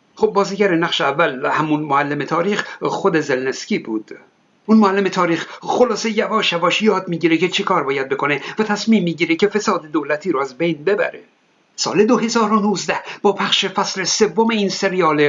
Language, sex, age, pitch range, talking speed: Persian, male, 60-79, 165-210 Hz, 160 wpm